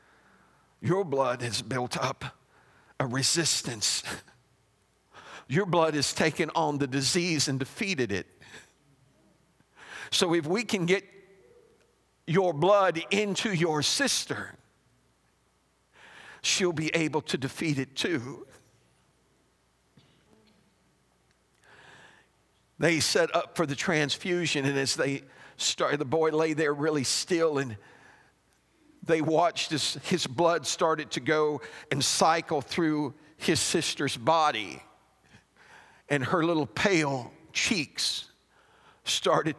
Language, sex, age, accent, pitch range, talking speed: English, male, 50-69, American, 145-180 Hz, 110 wpm